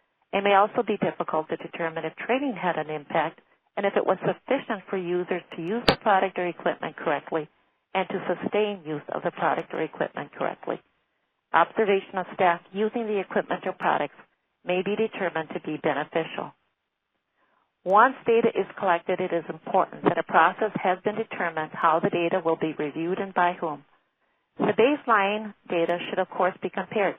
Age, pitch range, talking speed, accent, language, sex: 40-59, 170-210 Hz, 175 wpm, American, English, female